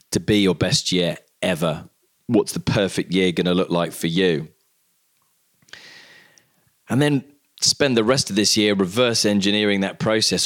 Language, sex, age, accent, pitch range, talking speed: English, male, 20-39, British, 95-115 Hz, 160 wpm